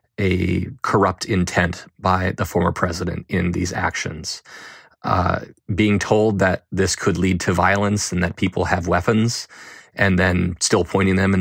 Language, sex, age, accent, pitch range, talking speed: English, male, 20-39, American, 90-100 Hz, 160 wpm